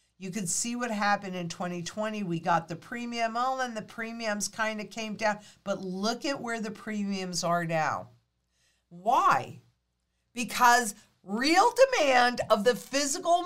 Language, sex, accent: English, female, American